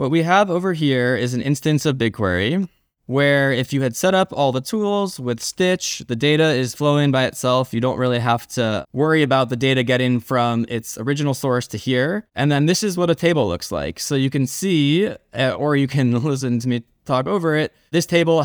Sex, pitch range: male, 125-160 Hz